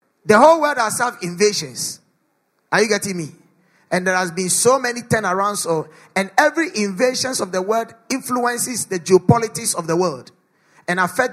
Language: English